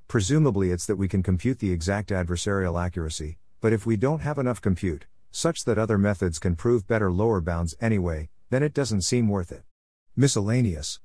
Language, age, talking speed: English, 50-69, 185 wpm